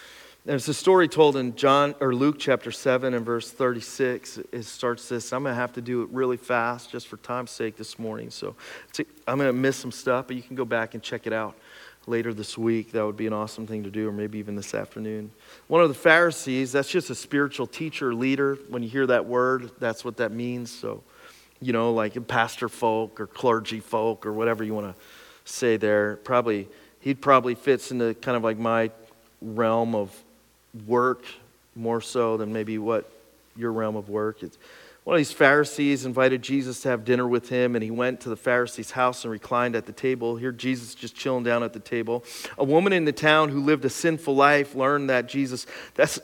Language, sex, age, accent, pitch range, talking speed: English, male, 40-59, American, 115-140 Hz, 215 wpm